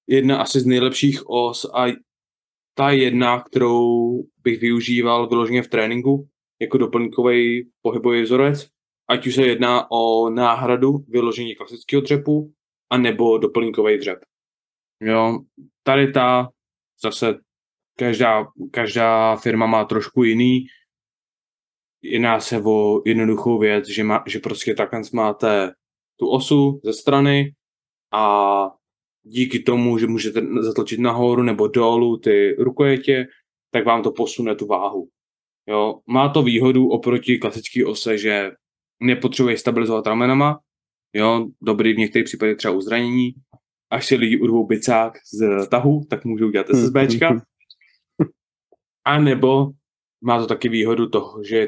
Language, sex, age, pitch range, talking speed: Czech, male, 20-39, 110-130 Hz, 130 wpm